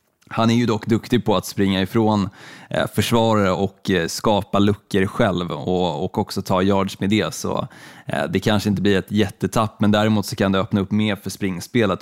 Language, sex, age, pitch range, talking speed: Swedish, male, 20-39, 100-120 Hz, 185 wpm